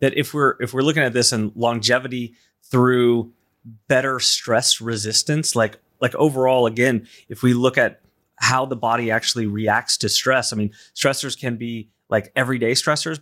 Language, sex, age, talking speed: English, male, 30-49, 170 wpm